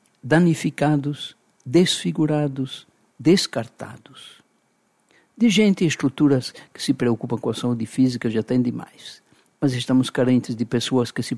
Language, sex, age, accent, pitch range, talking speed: Portuguese, male, 60-79, Brazilian, 125-170 Hz, 125 wpm